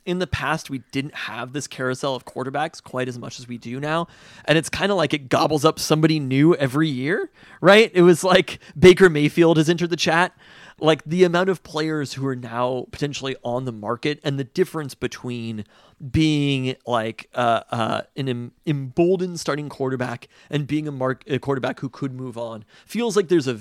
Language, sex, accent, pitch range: English, male, American, 120-155 Hz